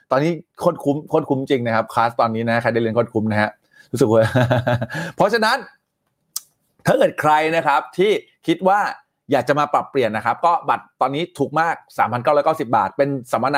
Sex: male